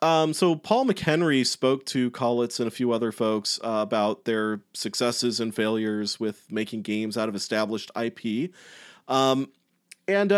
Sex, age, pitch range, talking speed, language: male, 30-49, 105-140 Hz, 155 wpm, English